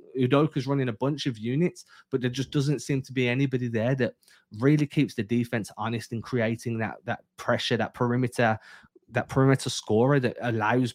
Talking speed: 180 wpm